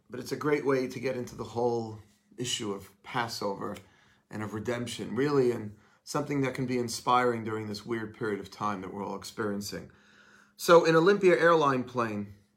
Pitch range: 110-135 Hz